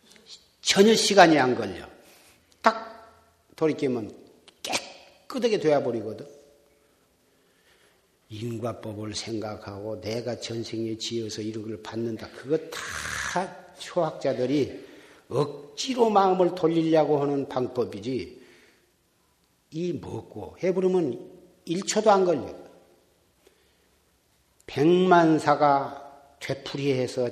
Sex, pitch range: male, 110-175 Hz